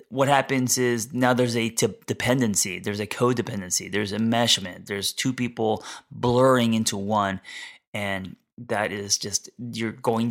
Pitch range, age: 100-125 Hz, 30-49